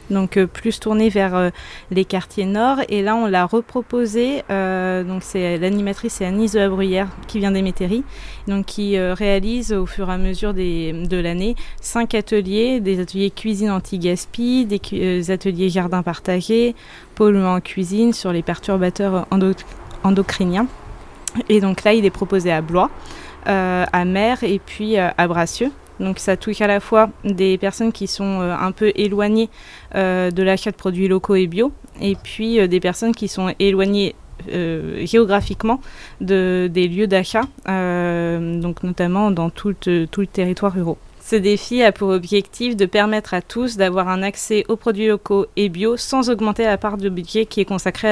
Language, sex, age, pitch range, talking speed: French, female, 20-39, 185-215 Hz, 180 wpm